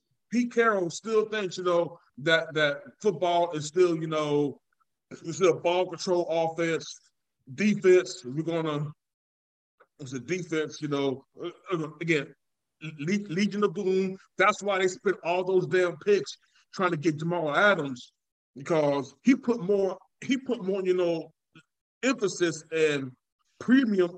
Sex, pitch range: male, 150-190 Hz